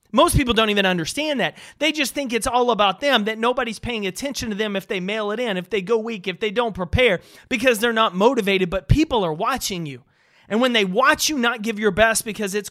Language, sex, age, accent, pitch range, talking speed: English, male, 30-49, American, 175-245 Hz, 245 wpm